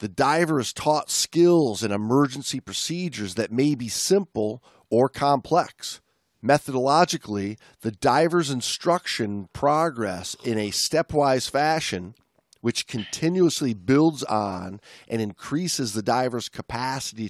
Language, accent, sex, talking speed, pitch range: English, American, male, 110 wpm, 110-155 Hz